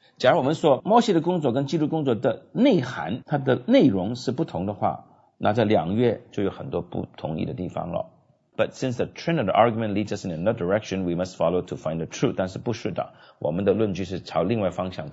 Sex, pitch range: male, 110-155 Hz